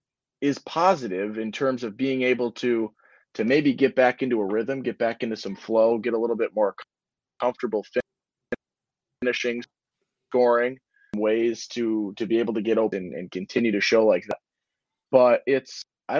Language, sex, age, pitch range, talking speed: English, male, 20-39, 110-130 Hz, 175 wpm